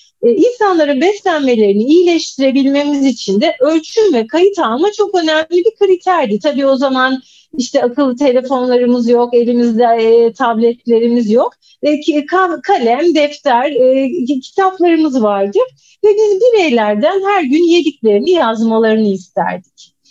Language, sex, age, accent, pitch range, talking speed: Turkish, female, 40-59, native, 240-375 Hz, 105 wpm